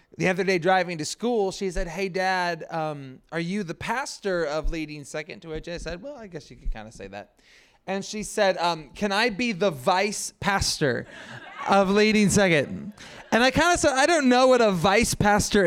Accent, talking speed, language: American, 215 wpm, English